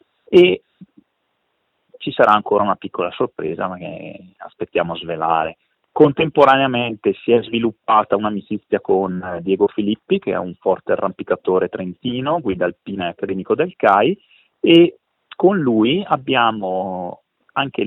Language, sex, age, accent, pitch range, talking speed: Italian, male, 30-49, native, 95-120 Hz, 125 wpm